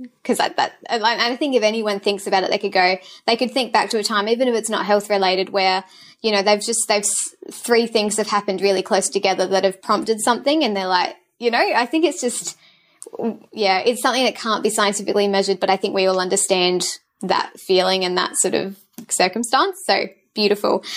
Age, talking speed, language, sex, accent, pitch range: 20-39, 220 wpm, English, female, Australian, 190-230 Hz